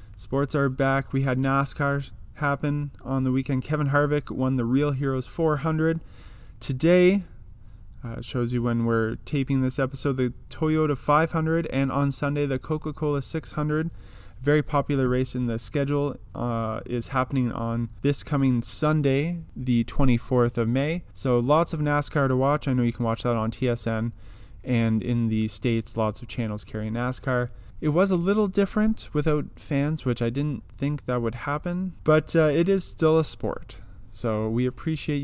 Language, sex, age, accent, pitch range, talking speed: English, male, 20-39, American, 120-150 Hz, 170 wpm